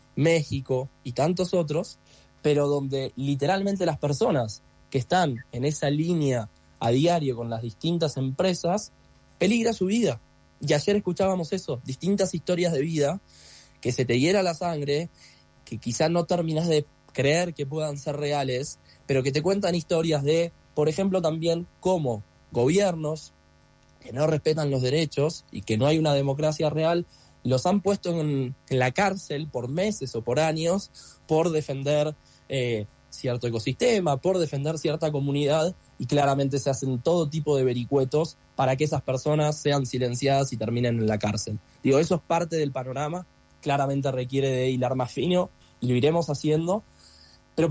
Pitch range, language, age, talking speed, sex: 125-165 Hz, Spanish, 20-39, 160 wpm, male